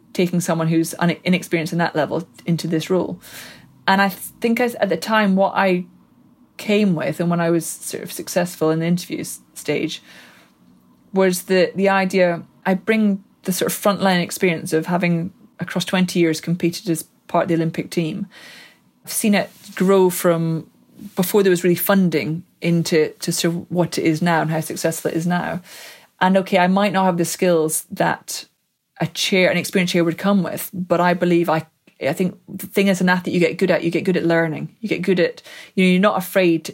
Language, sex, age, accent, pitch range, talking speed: English, female, 20-39, British, 165-190 Hz, 205 wpm